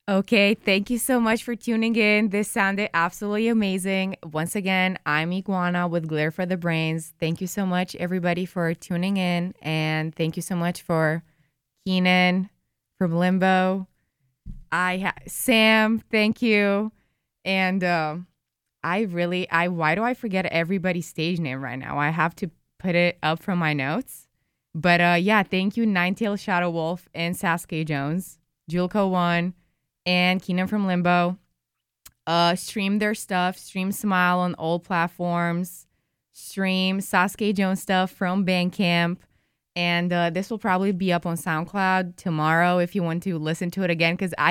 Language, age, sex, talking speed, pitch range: English, 20-39, female, 160 wpm, 165-190 Hz